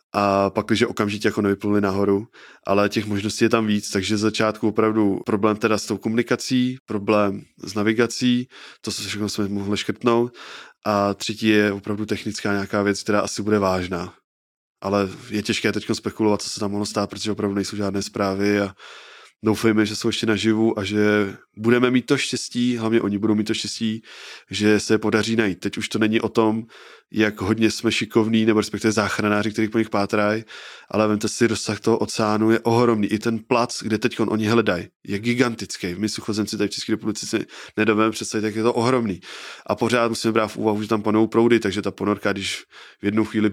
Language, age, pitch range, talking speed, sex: Czech, 20-39, 105-115 Hz, 195 wpm, male